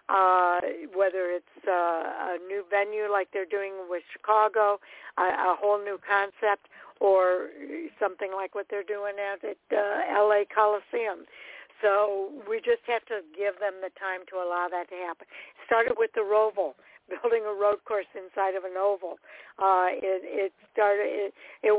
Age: 60-79